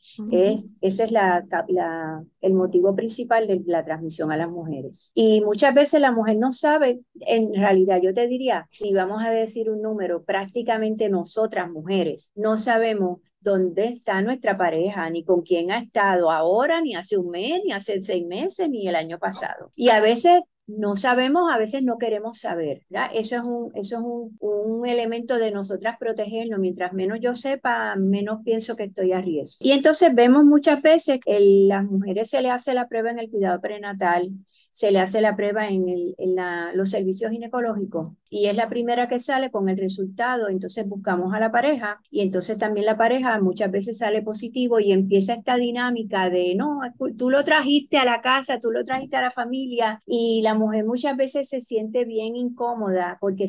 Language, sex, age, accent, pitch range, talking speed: Spanish, female, 50-69, American, 195-245 Hz, 190 wpm